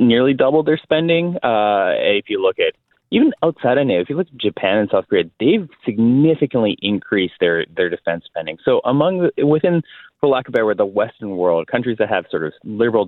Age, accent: 30-49, American